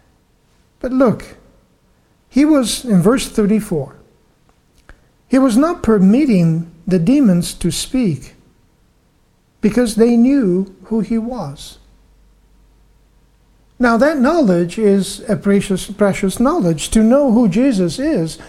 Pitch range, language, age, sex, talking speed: 190-240 Hz, English, 50-69, male, 110 wpm